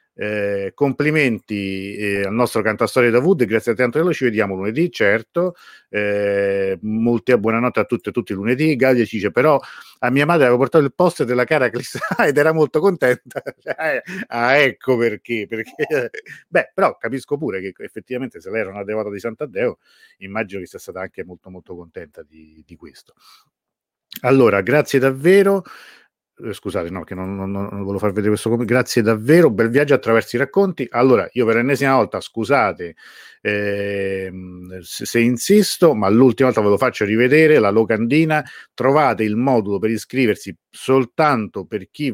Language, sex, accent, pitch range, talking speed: Italian, male, native, 105-145 Hz, 170 wpm